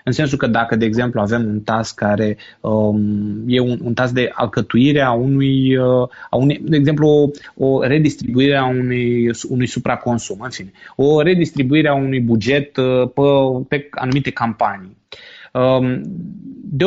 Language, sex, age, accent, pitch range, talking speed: Romanian, male, 20-39, native, 120-155 Hz, 130 wpm